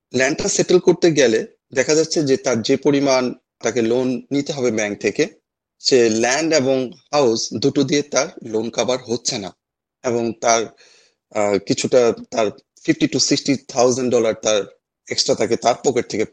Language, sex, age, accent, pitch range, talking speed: Bengali, male, 30-49, native, 120-150 Hz, 65 wpm